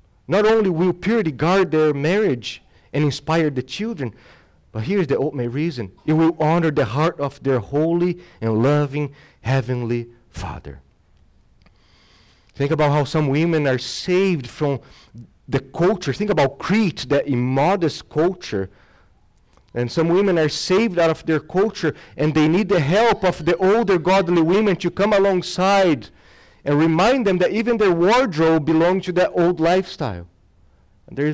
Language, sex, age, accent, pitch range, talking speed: English, male, 40-59, Brazilian, 120-170 Hz, 150 wpm